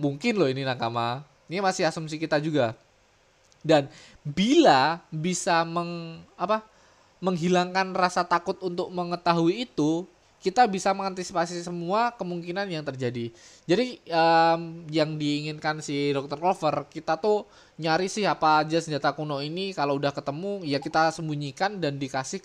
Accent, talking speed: native, 135 wpm